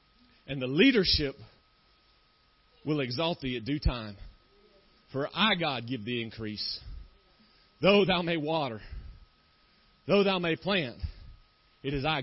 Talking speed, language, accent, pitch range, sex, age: 130 wpm, English, American, 115-155 Hz, male, 40-59